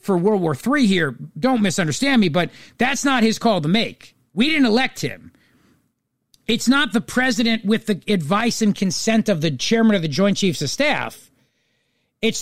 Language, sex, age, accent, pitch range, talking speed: English, male, 40-59, American, 160-230 Hz, 185 wpm